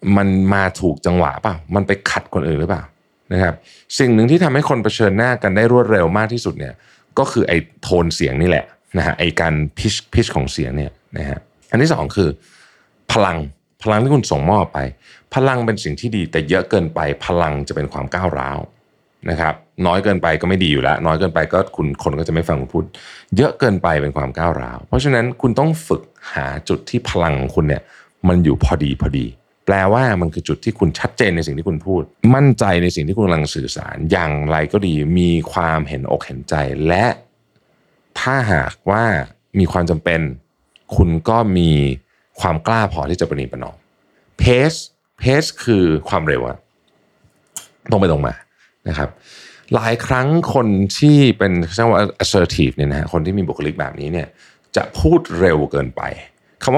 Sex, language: male, Thai